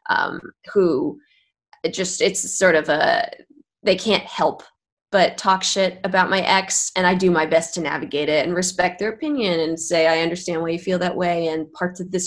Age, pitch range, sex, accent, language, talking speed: 20-39, 165-225 Hz, female, American, English, 200 wpm